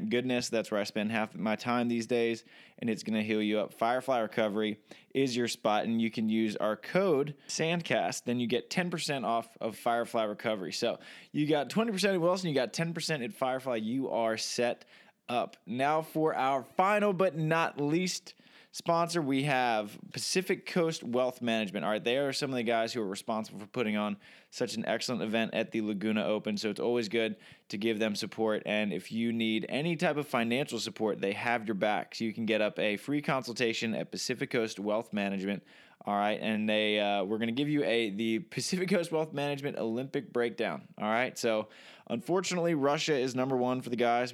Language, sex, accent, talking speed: English, male, American, 205 wpm